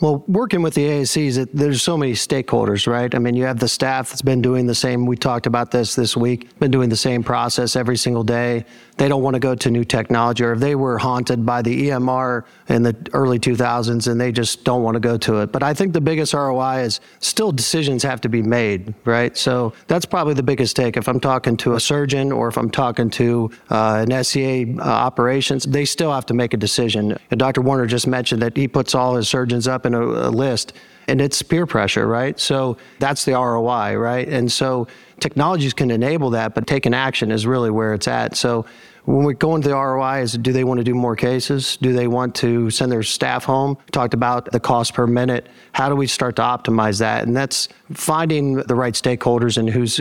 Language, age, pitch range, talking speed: English, 40-59, 120-135 Hz, 230 wpm